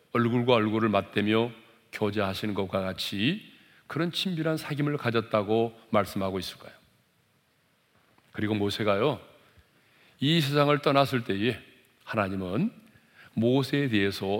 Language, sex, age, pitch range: Korean, male, 40-59, 105-145 Hz